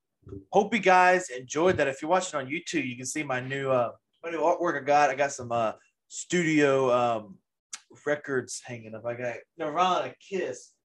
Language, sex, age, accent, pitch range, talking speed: English, male, 20-39, American, 120-175 Hz, 185 wpm